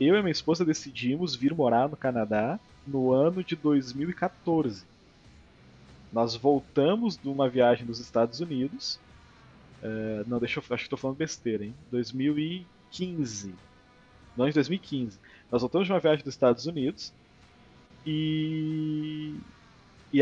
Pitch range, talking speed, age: 120-170 Hz, 135 wpm, 20-39